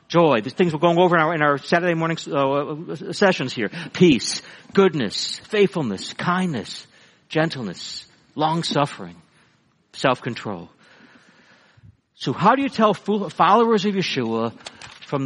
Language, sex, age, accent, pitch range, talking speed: English, male, 60-79, American, 125-180 Hz, 120 wpm